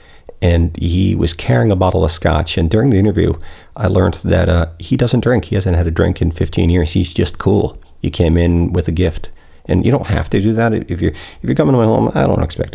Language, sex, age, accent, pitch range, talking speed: English, male, 40-59, American, 85-105 Hz, 255 wpm